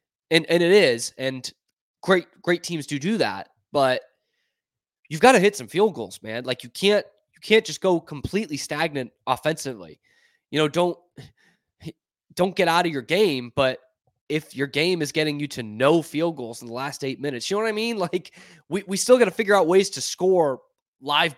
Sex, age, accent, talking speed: male, 20-39, American, 200 wpm